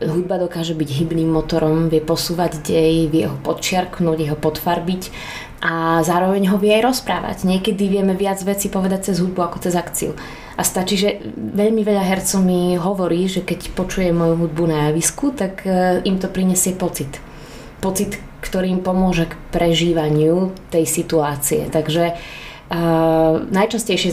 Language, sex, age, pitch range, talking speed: Slovak, female, 20-39, 165-190 Hz, 150 wpm